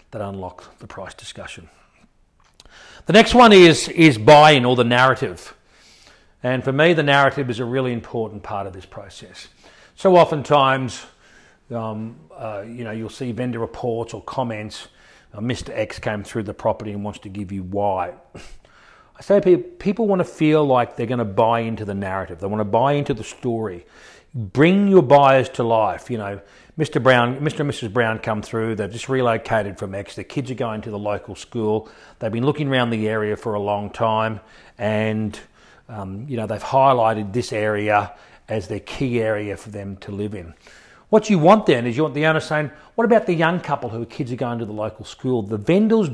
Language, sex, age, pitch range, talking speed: English, male, 40-59, 110-150 Hz, 200 wpm